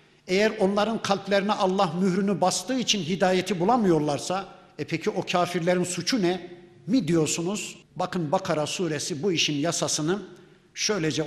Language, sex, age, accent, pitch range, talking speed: Turkish, male, 60-79, native, 170-205 Hz, 130 wpm